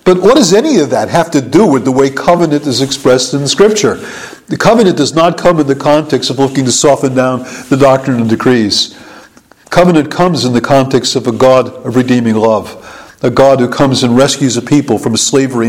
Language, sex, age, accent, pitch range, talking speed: English, male, 50-69, American, 125-155 Hz, 215 wpm